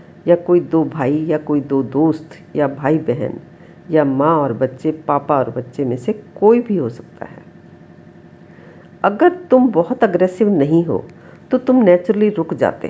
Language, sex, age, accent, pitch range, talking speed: Hindi, female, 50-69, native, 160-205 Hz, 165 wpm